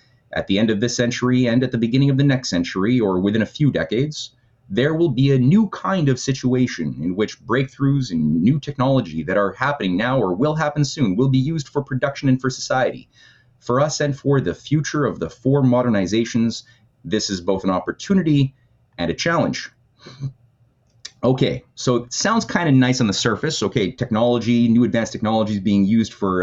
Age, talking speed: 30-49, 195 wpm